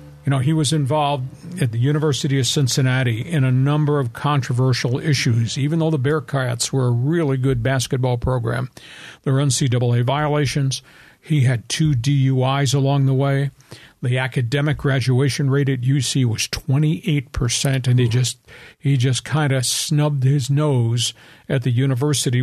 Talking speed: 160 wpm